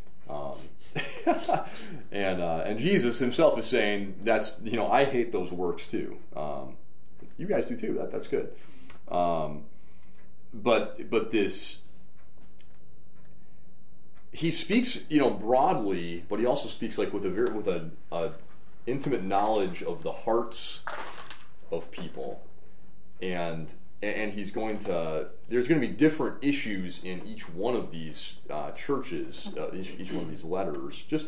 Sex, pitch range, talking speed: male, 80-105 Hz, 145 wpm